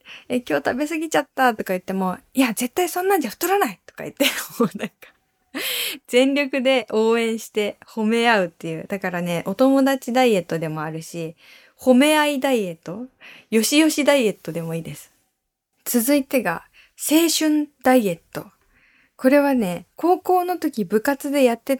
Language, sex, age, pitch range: Japanese, female, 20-39, 185-280 Hz